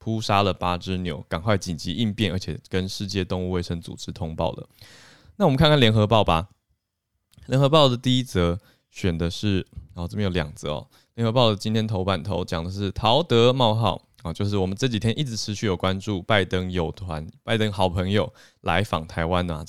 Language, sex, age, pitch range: Chinese, male, 20-39, 90-115 Hz